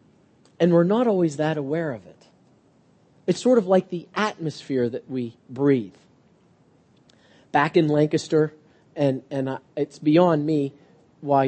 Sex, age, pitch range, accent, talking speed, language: male, 40-59, 145-210 Hz, American, 135 wpm, English